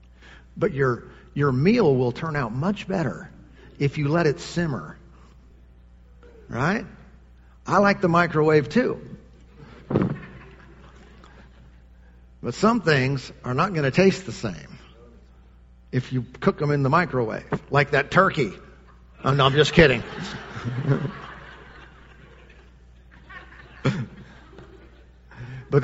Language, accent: English, American